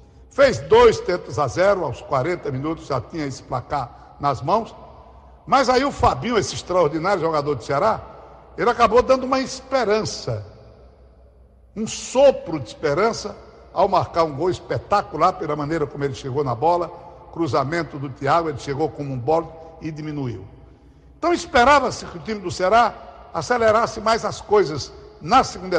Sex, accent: male, Brazilian